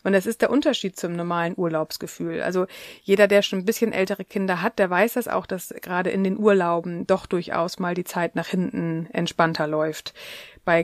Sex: female